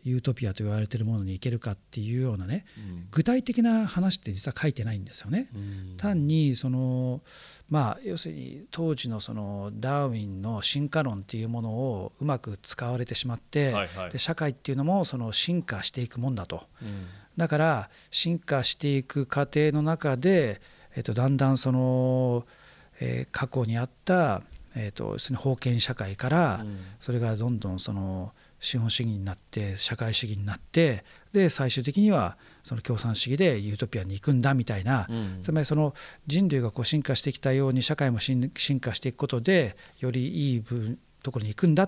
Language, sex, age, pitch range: Japanese, male, 50-69, 105-145 Hz